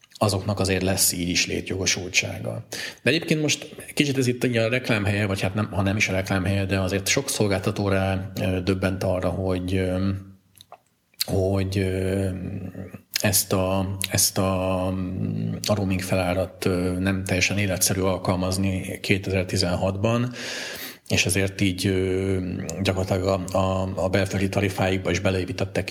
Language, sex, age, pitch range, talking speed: Hungarian, male, 40-59, 90-100 Hz, 125 wpm